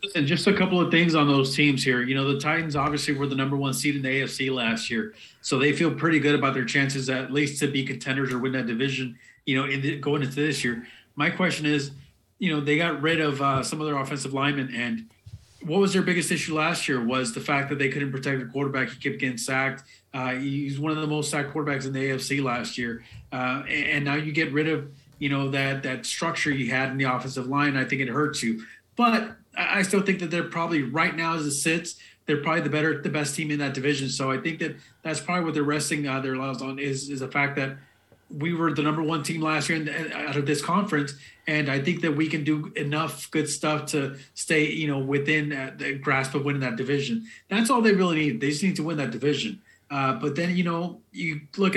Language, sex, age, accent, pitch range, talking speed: English, male, 30-49, American, 135-160 Hz, 245 wpm